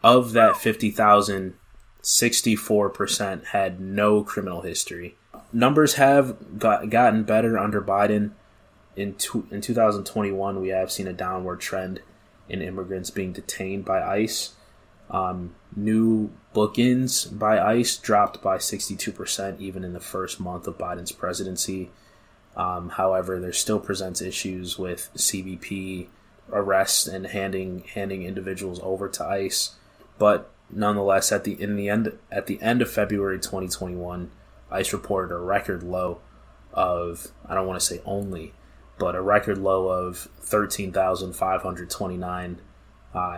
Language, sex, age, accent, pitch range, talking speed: English, male, 20-39, American, 90-105 Hz, 130 wpm